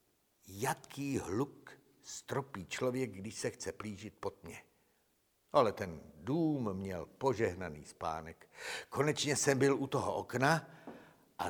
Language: Czech